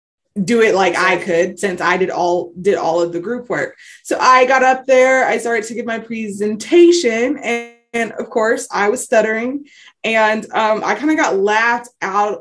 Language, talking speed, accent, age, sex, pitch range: English, 200 wpm, American, 20-39, female, 180-225 Hz